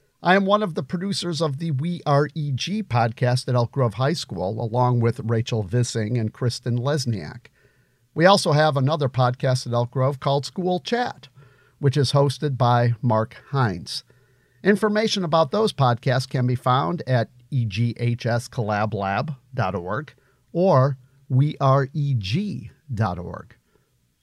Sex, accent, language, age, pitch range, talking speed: male, American, English, 50-69, 120-145 Hz, 130 wpm